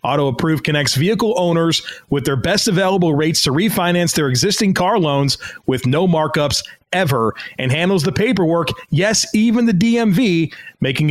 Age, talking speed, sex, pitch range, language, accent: 30-49, 150 wpm, male, 150-185 Hz, English, American